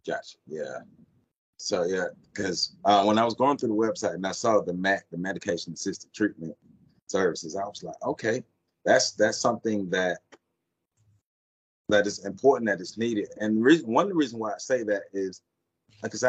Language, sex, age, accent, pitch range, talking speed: English, male, 30-49, American, 85-110 Hz, 170 wpm